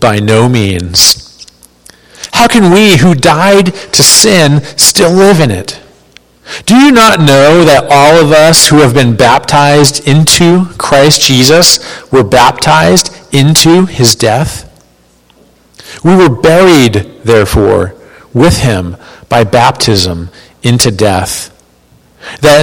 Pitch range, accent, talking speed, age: 100-160 Hz, American, 120 wpm, 40-59